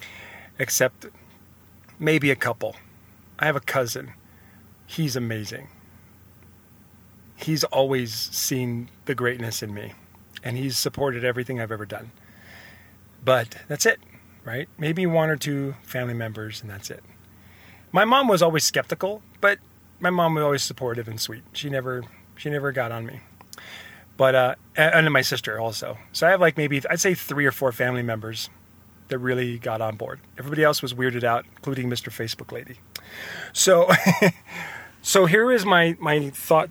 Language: English